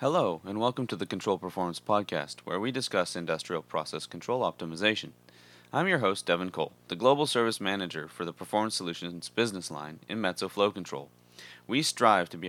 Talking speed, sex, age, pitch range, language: 185 wpm, male, 30-49, 80-105 Hz, English